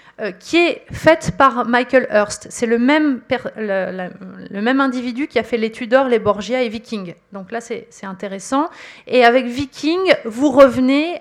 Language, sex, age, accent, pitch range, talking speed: French, female, 30-49, French, 210-270 Hz, 180 wpm